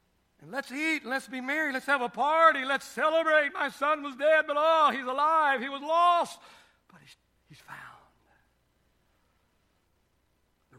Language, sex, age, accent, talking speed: English, male, 60-79, American, 145 wpm